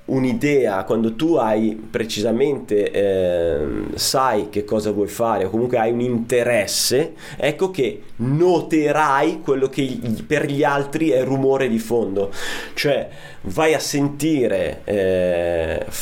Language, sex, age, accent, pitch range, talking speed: Italian, male, 30-49, native, 110-150 Hz, 125 wpm